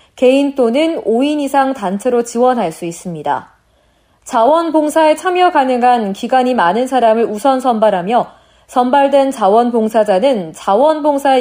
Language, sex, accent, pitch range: Korean, female, native, 220-300 Hz